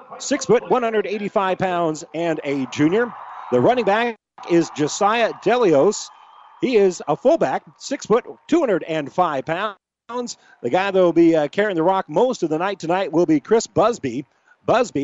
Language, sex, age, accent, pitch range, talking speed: English, male, 40-59, American, 155-210 Hz, 160 wpm